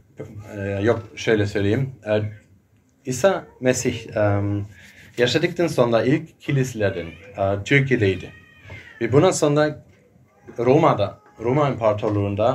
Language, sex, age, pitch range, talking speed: Turkish, male, 30-49, 105-130 Hz, 75 wpm